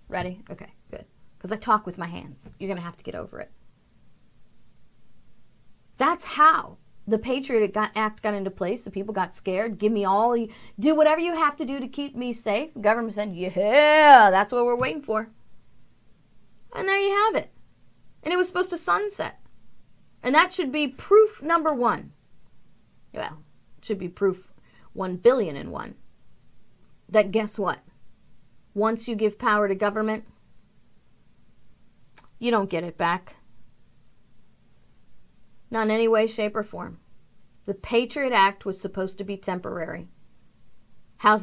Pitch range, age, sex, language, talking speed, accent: 195-245 Hz, 30-49, female, English, 155 wpm, American